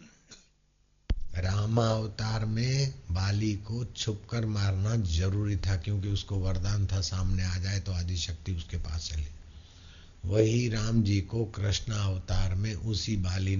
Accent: native